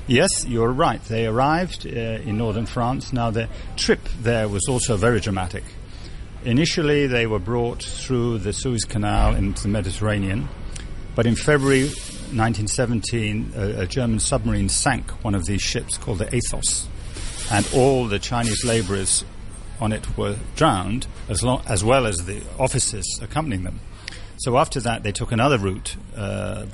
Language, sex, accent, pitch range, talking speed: English, male, British, 100-120 Hz, 155 wpm